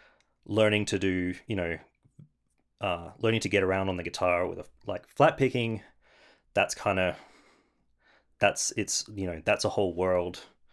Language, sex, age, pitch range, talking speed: English, male, 30-49, 90-100 Hz, 170 wpm